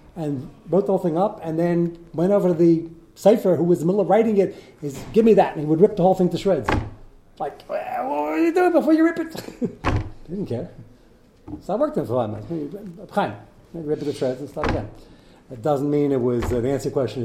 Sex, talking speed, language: male, 245 wpm, English